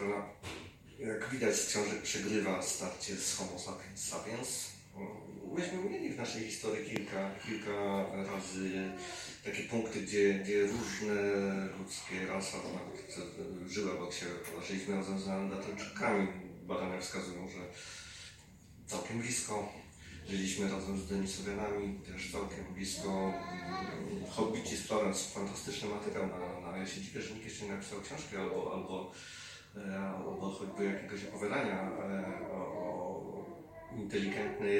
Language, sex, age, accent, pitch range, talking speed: Polish, male, 30-49, native, 95-105 Hz, 110 wpm